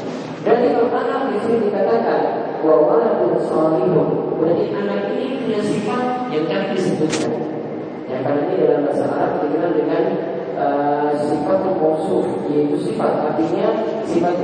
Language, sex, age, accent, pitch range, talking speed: Indonesian, male, 40-59, native, 155-240 Hz, 130 wpm